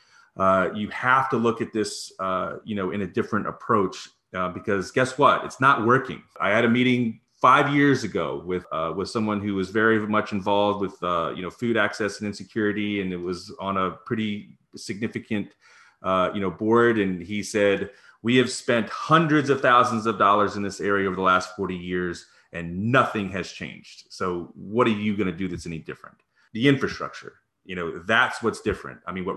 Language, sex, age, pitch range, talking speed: English, male, 30-49, 100-125 Hz, 200 wpm